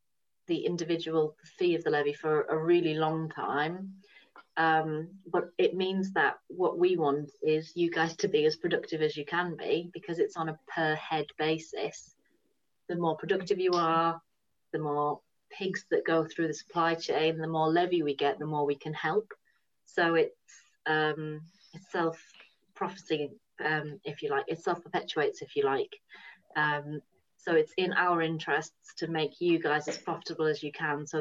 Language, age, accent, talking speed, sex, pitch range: English, 30-49, British, 175 wpm, female, 150-180 Hz